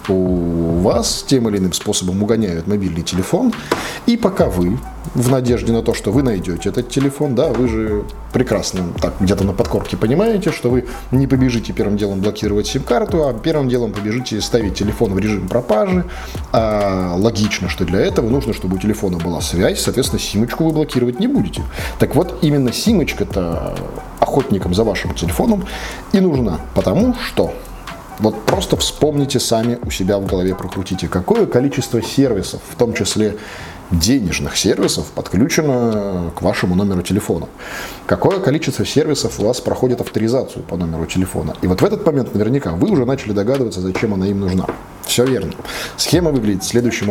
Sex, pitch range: male, 95-125 Hz